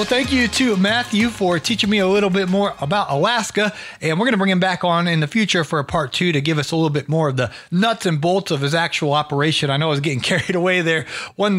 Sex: male